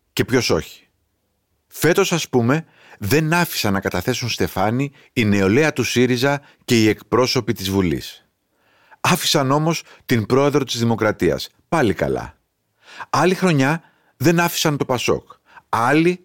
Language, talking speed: Greek, 130 wpm